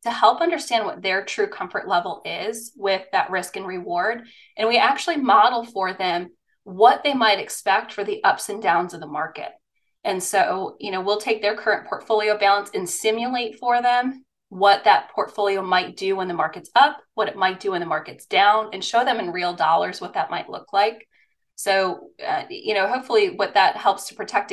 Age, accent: 20-39, American